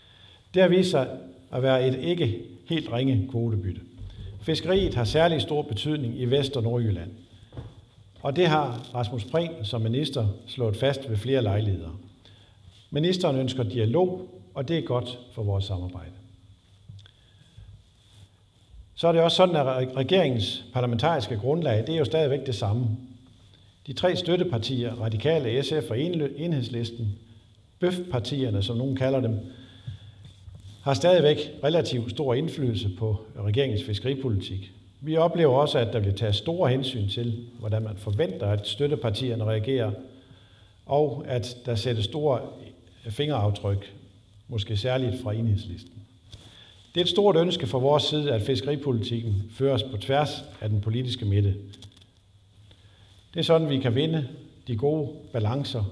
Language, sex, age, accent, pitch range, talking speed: Danish, male, 50-69, native, 105-135 Hz, 140 wpm